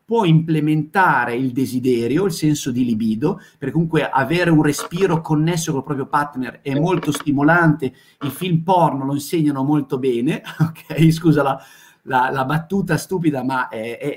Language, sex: Italian, male